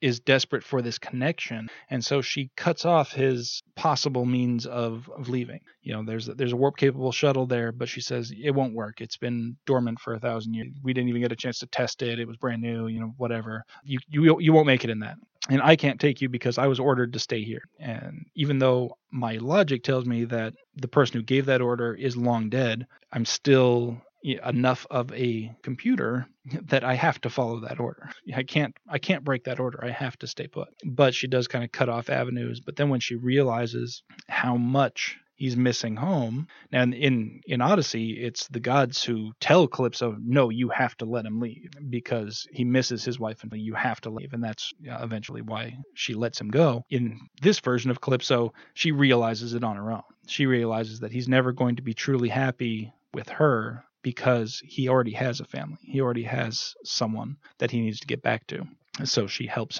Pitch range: 115-135 Hz